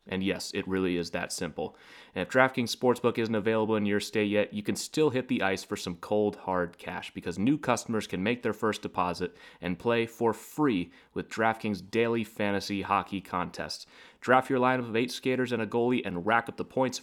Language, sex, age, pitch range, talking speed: English, male, 30-49, 95-120 Hz, 210 wpm